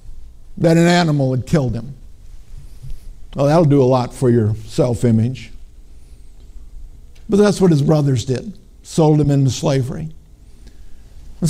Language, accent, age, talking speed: English, American, 50-69, 130 wpm